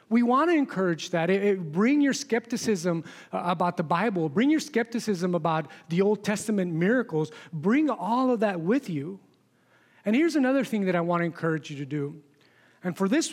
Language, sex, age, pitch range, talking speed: English, male, 30-49, 160-215 Hz, 180 wpm